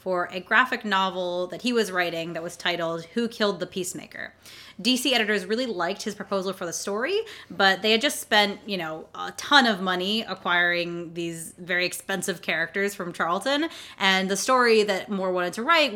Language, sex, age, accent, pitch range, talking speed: English, female, 20-39, American, 175-220 Hz, 190 wpm